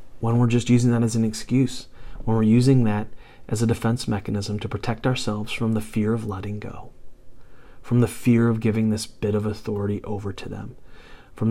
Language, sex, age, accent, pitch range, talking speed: English, male, 30-49, American, 105-130 Hz, 200 wpm